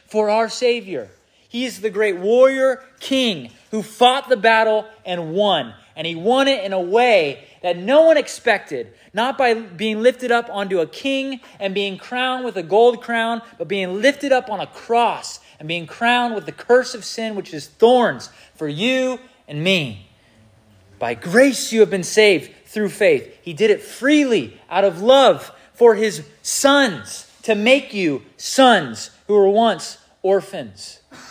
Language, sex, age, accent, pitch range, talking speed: English, male, 30-49, American, 145-235 Hz, 170 wpm